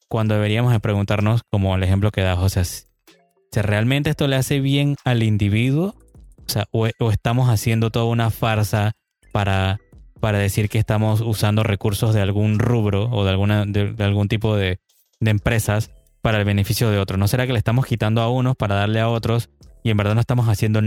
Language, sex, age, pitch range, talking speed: Spanish, male, 20-39, 105-120 Hz, 205 wpm